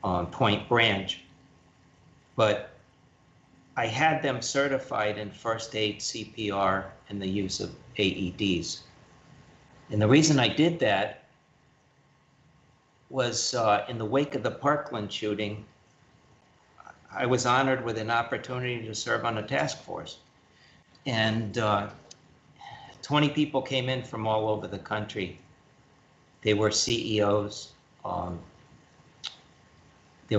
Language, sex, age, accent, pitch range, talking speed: English, male, 50-69, American, 100-125 Hz, 120 wpm